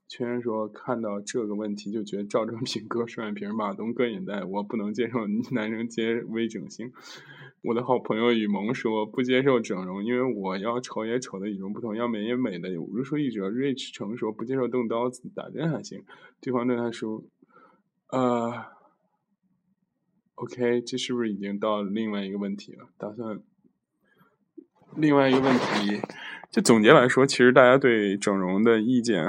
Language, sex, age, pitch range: Chinese, male, 20-39, 110-145 Hz